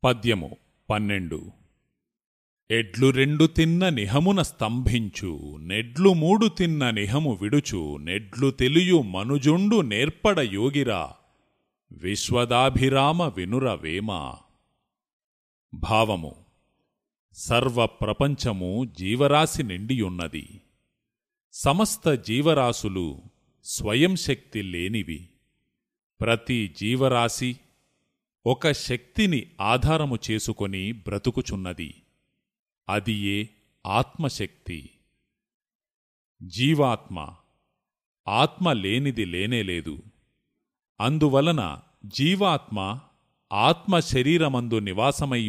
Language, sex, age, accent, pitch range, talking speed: Telugu, male, 40-59, native, 105-145 Hz, 60 wpm